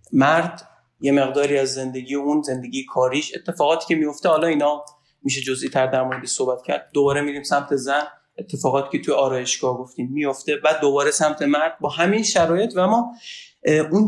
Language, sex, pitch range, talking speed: Persian, male, 140-185 Hz, 165 wpm